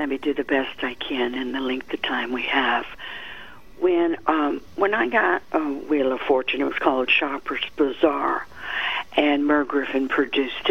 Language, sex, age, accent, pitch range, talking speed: English, female, 60-79, American, 140-190 Hz, 180 wpm